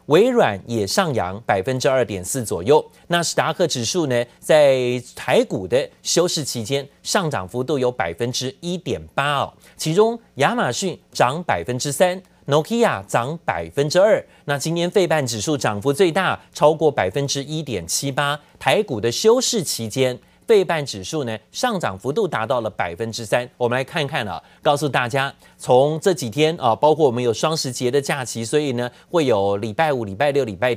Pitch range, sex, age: 120-165 Hz, male, 30-49